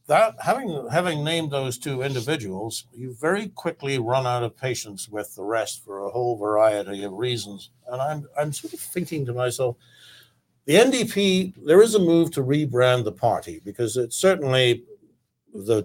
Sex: male